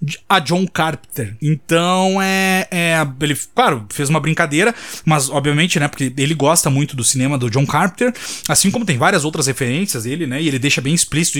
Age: 20-39